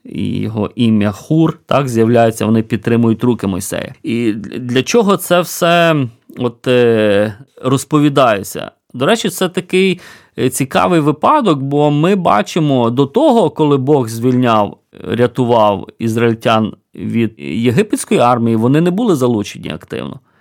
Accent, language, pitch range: native, Ukrainian, 120-160 Hz